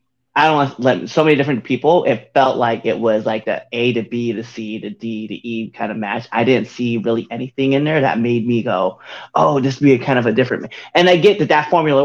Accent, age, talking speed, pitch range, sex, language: American, 20-39, 270 wpm, 120-145 Hz, male, English